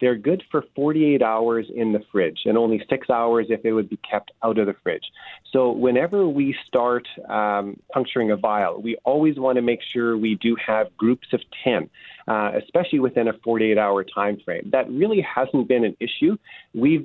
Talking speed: 195 wpm